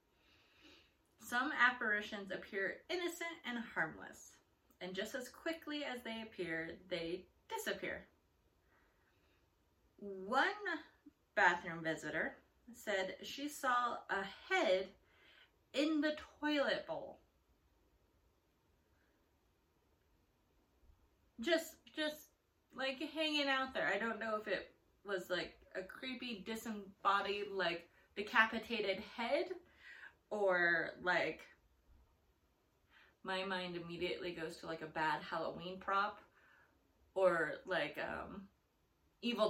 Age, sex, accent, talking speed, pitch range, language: 30-49, female, American, 95 wpm, 175-280 Hz, English